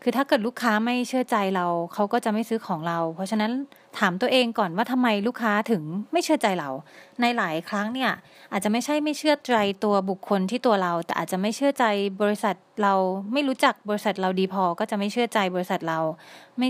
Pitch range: 190-245 Hz